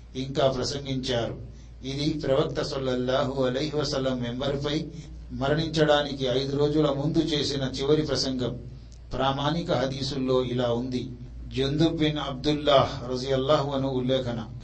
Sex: male